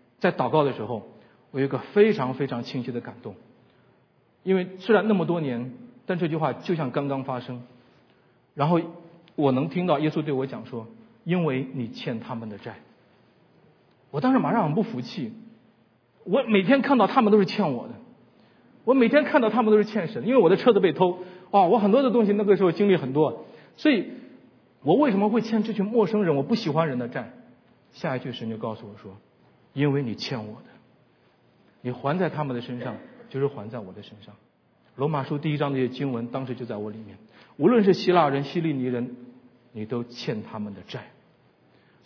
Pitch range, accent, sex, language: 125-200 Hz, native, male, Chinese